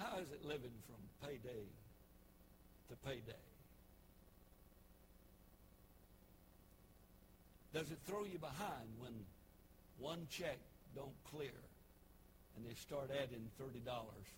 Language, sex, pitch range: English, male, 95-150 Hz